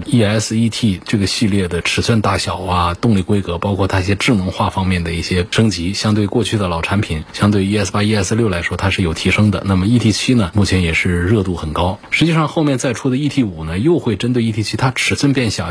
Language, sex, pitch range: Chinese, male, 90-120 Hz